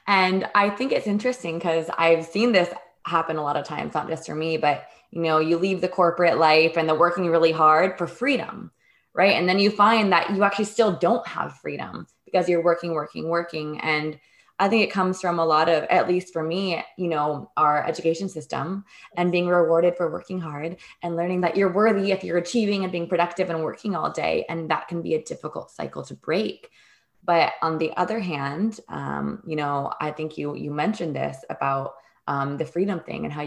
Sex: female